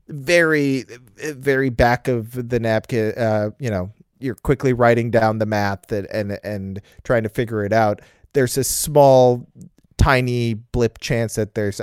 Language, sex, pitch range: English, male, 110-130 Hz